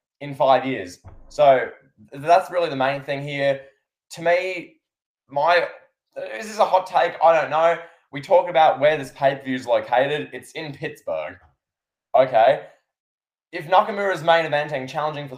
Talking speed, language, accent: 165 wpm, English, Australian